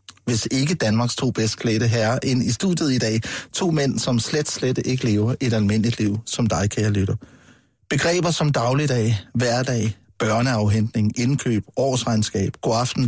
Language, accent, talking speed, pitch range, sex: Danish, native, 160 wpm, 110-145 Hz, male